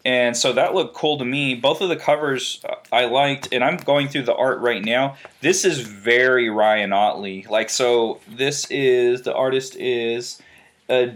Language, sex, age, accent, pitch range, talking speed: English, male, 20-39, American, 120-145 Hz, 180 wpm